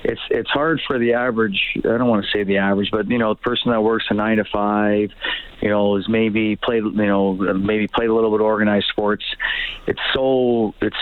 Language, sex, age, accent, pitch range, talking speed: English, male, 40-59, American, 105-120 Hz, 230 wpm